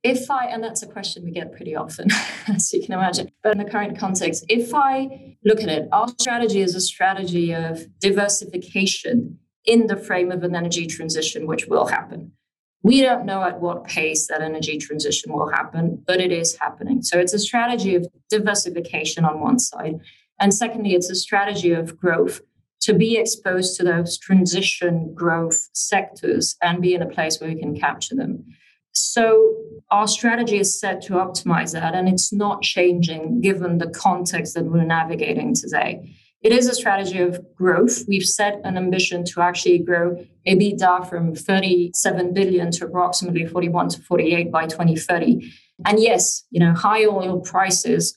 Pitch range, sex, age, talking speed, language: 170-205 Hz, female, 30-49, 175 wpm, English